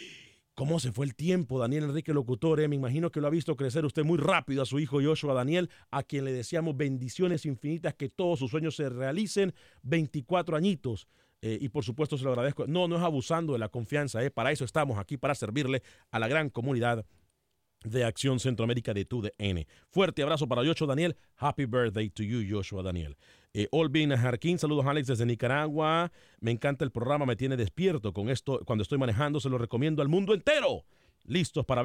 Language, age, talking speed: Spanish, 40-59, 200 wpm